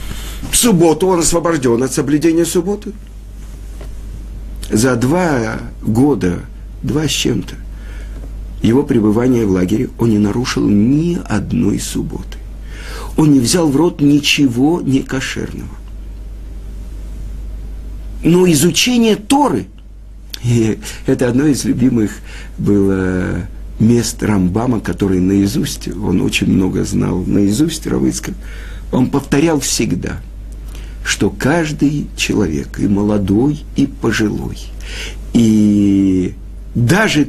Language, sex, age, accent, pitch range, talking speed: Russian, male, 50-69, native, 100-145 Hz, 100 wpm